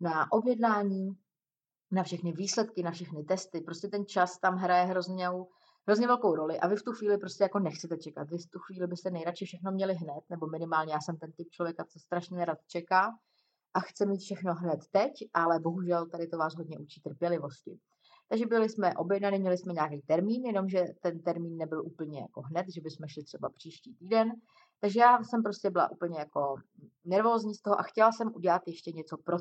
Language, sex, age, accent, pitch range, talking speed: Czech, female, 30-49, native, 165-200 Hz, 200 wpm